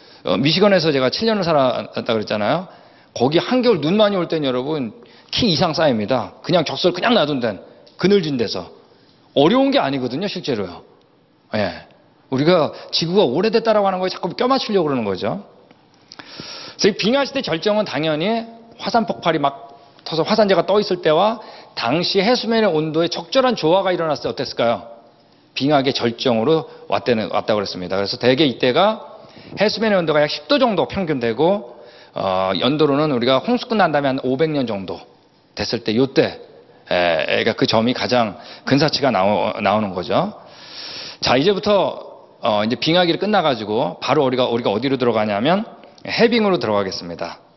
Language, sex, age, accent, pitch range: Korean, male, 40-59, native, 130-210 Hz